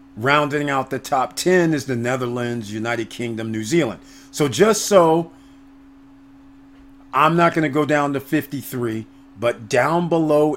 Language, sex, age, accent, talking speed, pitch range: English, male, 50-69, American, 150 wpm, 135-165 Hz